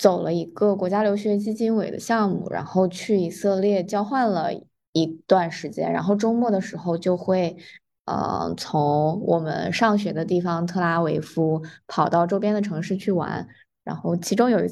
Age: 20-39